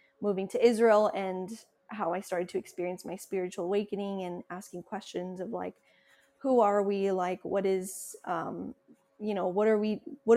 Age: 20-39